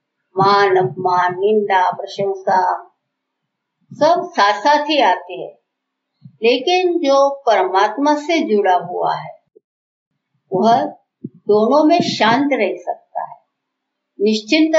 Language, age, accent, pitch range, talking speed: Hindi, 60-79, native, 190-265 Hz, 95 wpm